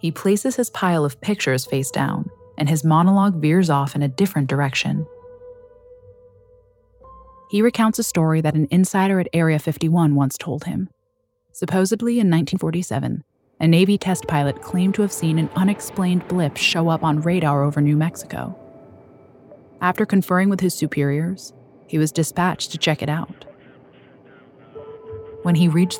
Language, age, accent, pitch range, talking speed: English, 20-39, American, 140-190 Hz, 150 wpm